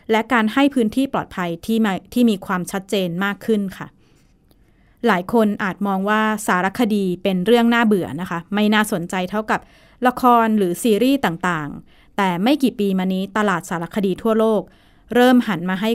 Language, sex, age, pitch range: Thai, female, 20-39, 190-235 Hz